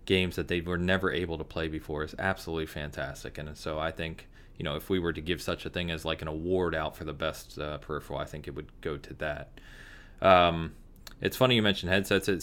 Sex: male